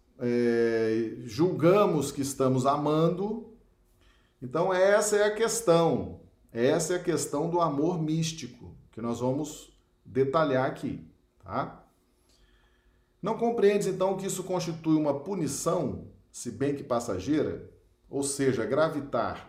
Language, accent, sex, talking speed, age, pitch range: Portuguese, Brazilian, male, 115 wpm, 40-59, 130-170 Hz